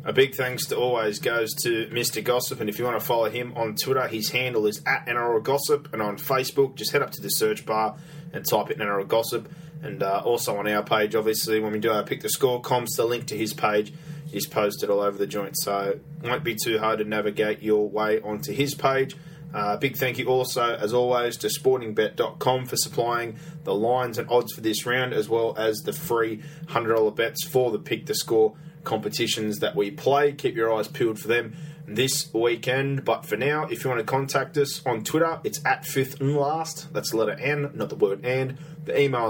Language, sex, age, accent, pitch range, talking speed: English, male, 20-39, Australian, 110-145 Hz, 225 wpm